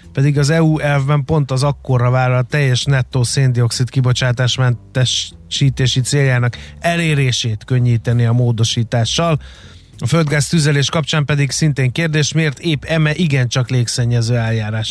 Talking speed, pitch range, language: 120 wpm, 115-145 Hz, Hungarian